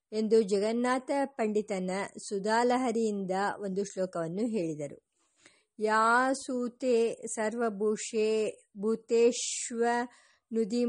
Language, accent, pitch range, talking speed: English, Indian, 210-255 Hz, 60 wpm